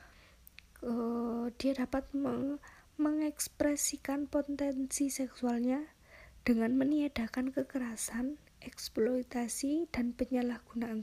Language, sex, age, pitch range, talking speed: Indonesian, female, 20-39, 230-275 Hz, 60 wpm